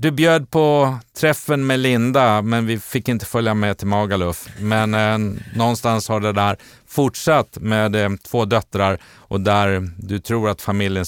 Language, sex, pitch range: Swedish, male, 95-115 Hz